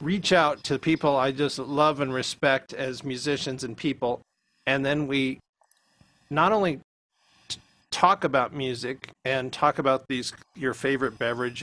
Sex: male